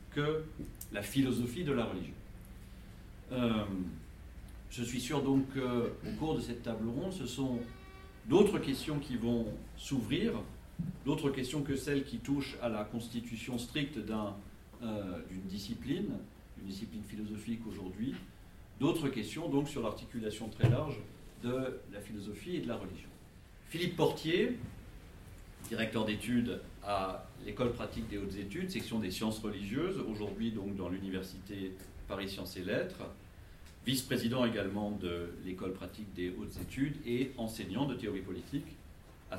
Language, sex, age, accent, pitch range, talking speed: French, male, 40-59, French, 95-120 Hz, 140 wpm